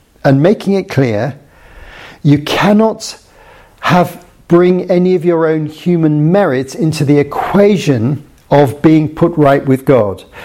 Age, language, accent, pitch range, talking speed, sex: 50-69, English, British, 130-170 Hz, 130 wpm, male